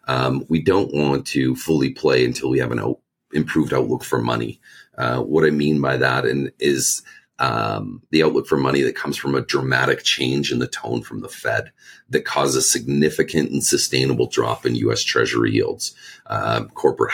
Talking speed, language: 180 wpm, English